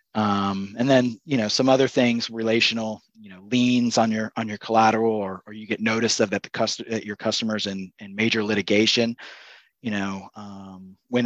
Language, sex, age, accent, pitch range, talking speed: English, male, 30-49, American, 95-110 Hz, 190 wpm